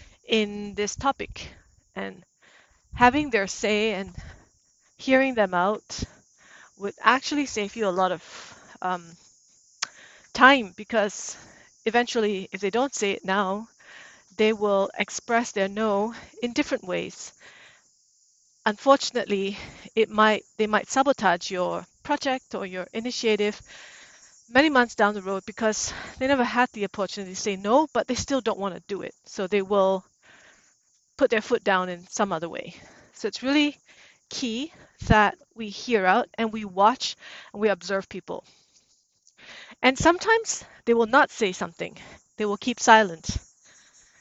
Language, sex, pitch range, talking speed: English, female, 200-245 Hz, 145 wpm